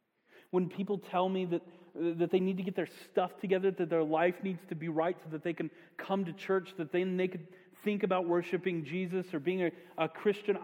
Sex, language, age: male, English, 40-59